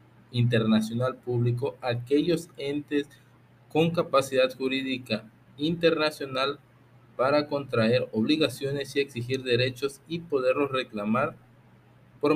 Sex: male